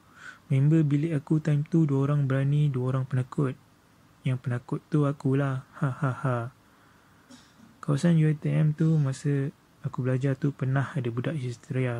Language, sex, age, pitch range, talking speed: Malay, male, 20-39, 125-145 Hz, 145 wpm